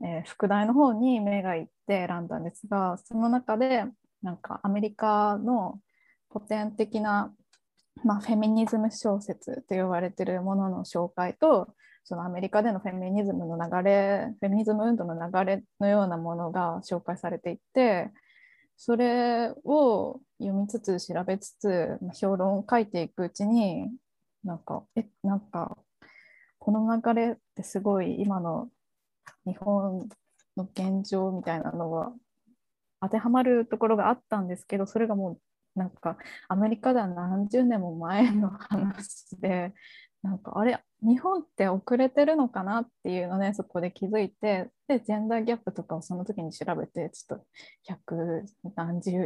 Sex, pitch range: female, 185-230 Hz